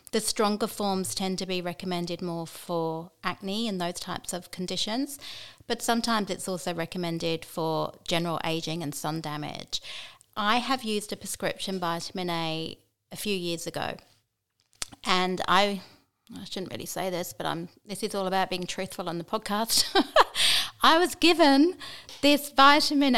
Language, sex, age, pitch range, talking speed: English, female, 30-49, 170-205 Hz, 155 wpm